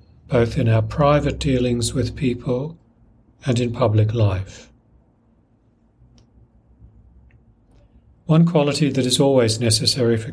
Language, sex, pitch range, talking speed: English, male, 110-125 Hz, 105 wpm